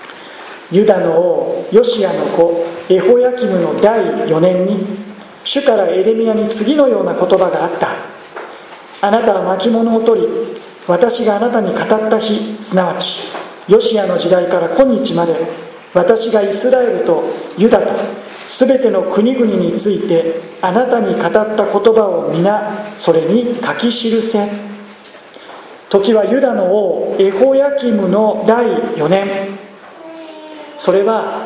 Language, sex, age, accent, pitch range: Japanese, male, 40-59, native, 190-245 Hz